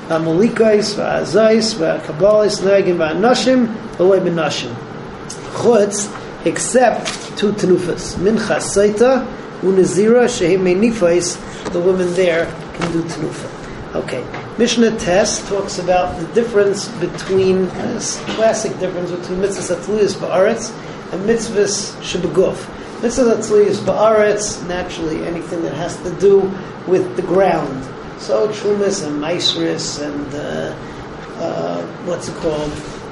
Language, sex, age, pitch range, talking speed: English, male, 40-59, 175-210 Hz, 120 wpm